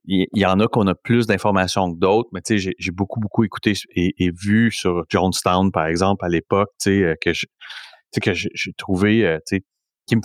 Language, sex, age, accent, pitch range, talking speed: English, male, 30-49, Canadian, 90-110 Hz, 235 wpm